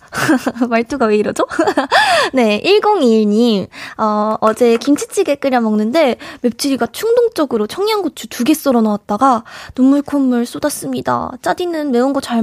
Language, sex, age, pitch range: Korean, female, 20-39, 220-305 Hz